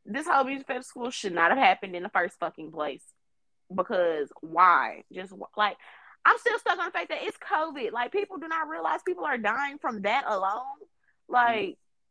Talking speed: 190 wpm